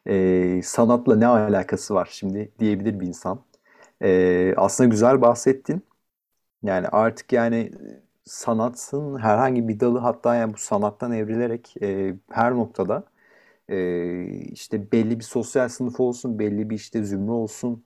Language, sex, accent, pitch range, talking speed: Turkish, male, native, 105-145 Hz, 135 wpm